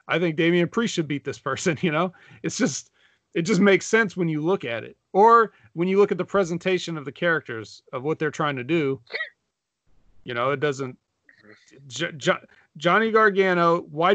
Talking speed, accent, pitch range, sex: 185 wpm, American, 140-185 Hz, male